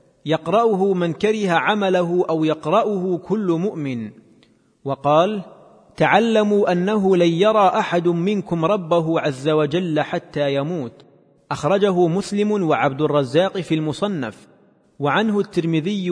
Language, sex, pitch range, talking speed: Arabic, male, 155-200 Hz, 105 wpm